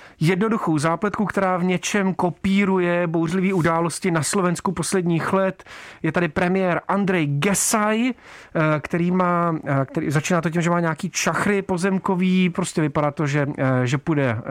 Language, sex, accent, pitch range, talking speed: Czech, male, native, 155-185 Hz, 140 wpm